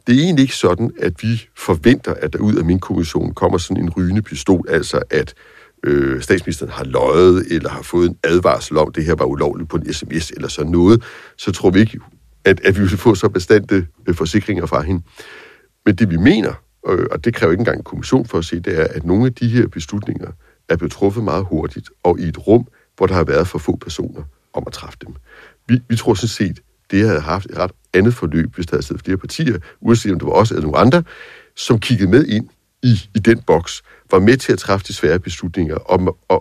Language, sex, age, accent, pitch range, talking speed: Danish, male, 60-79, native, 85-115 Hz, 230 wpm